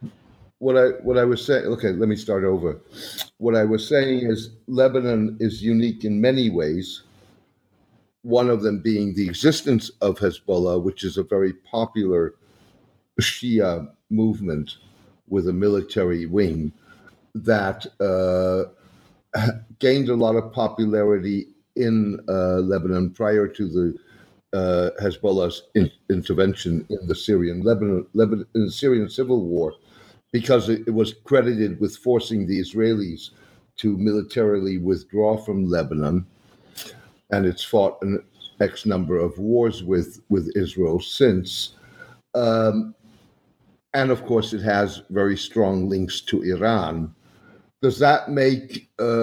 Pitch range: 95-115 Hz